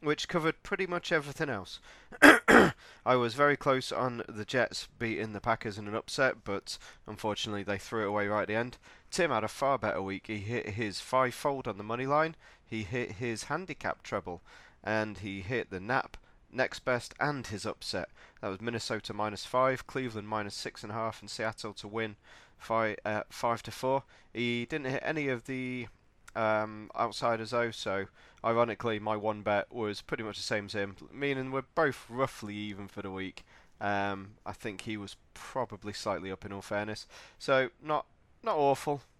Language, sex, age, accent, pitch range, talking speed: English, male, 30-49, British, 105-125 Hz, 190 wpm